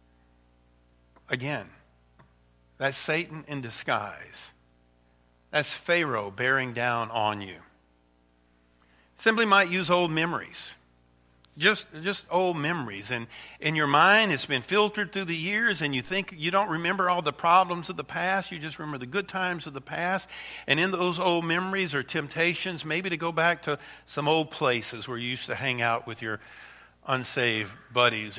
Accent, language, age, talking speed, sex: American, English, 50-69, 160 wpm, male